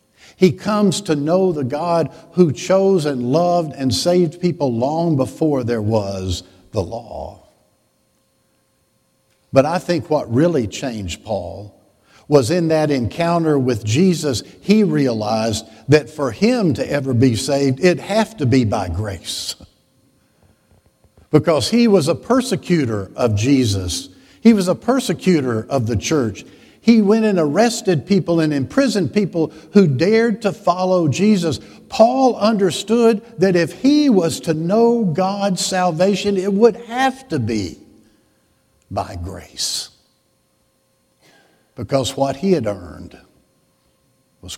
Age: 50-69